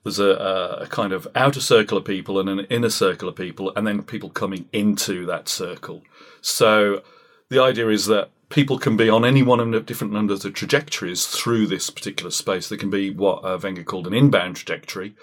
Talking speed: 210 wpm